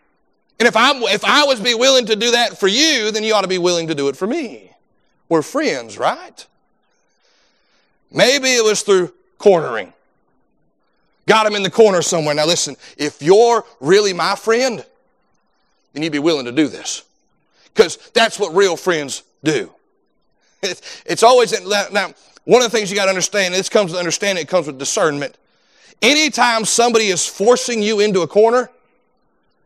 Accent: American